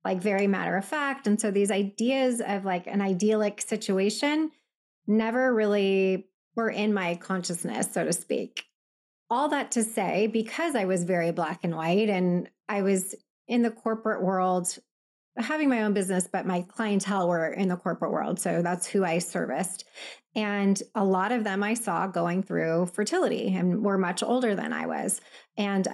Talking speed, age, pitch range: 175 wpm, 20-39, 190-225 Hz